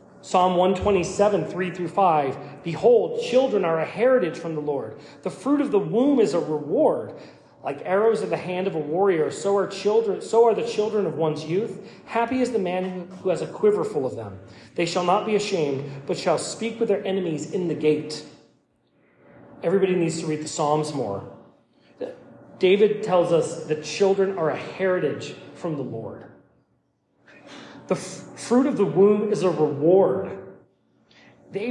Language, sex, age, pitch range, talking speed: English, male, 30-49, 160-215 Hz, 175 wpm